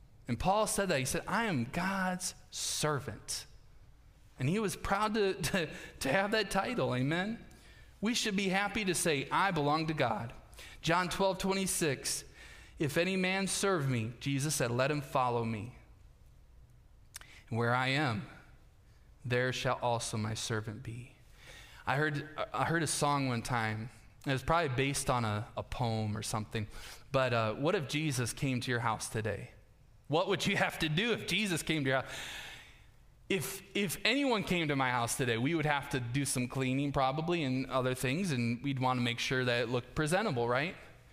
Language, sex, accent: English, male, American